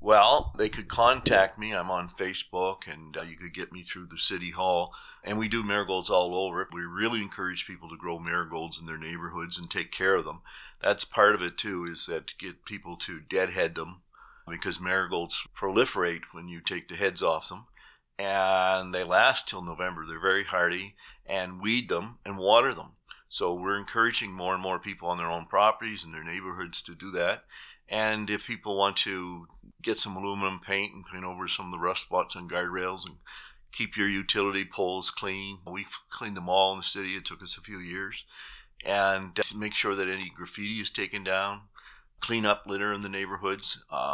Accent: American